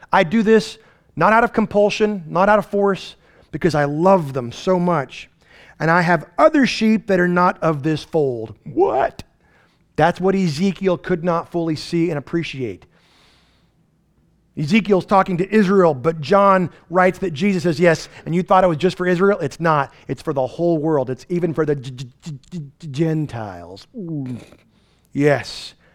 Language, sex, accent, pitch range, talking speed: English, male, American, 155-200 Hz, 160 wpm